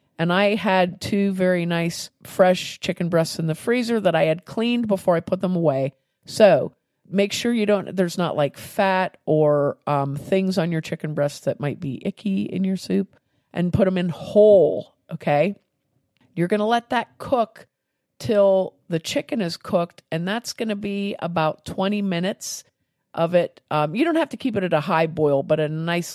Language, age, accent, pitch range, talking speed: English, 50-69, American, 160-195 Hz, 195 wpm